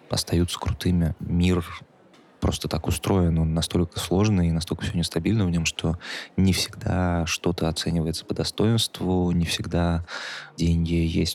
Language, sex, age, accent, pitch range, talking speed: Russian, male, 20-39, native, 85-95 Hz, 135 wpm